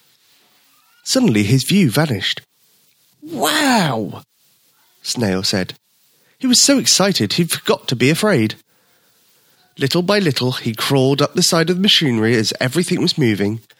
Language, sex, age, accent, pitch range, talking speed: English, male, 30-49, British, 130-190 Hz, 135 wpm